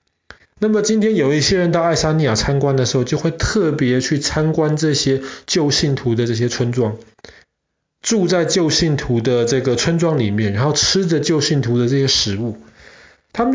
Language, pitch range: Chinese, 120-155 Hz